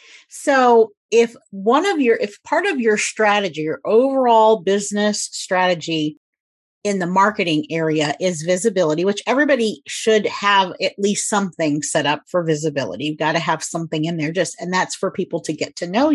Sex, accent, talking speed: female, American, 175 wpm